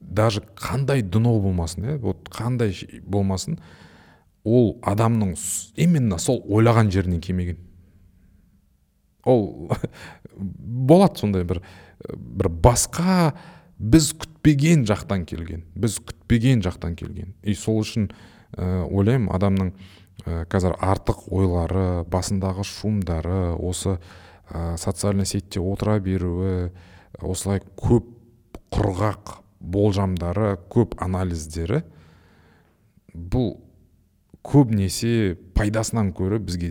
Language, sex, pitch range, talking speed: Russian, male, 90-110 Hz, 85 wpm